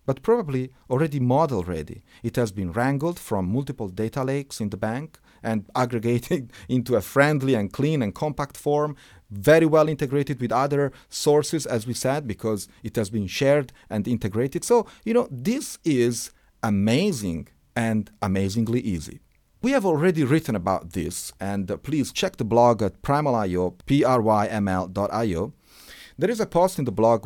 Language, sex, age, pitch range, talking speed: English, male, 40-59, 100-140 Hz, 160 wpm